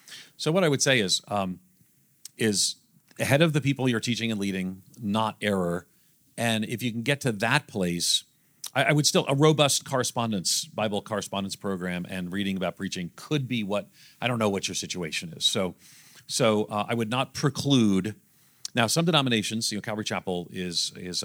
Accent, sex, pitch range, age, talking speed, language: American, male, 95-120 Hz, 40-59, 185 wpm, English